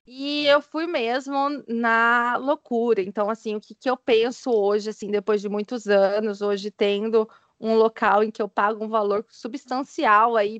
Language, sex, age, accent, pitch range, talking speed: Portuguese, female, 20-39, Brazilian, 210-255 Hz, 175 wpm